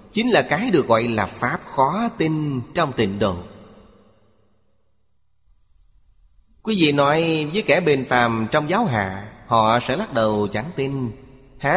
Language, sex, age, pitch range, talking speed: Vietnamese, male, 30-49, 100-135 Hz, 150 wpm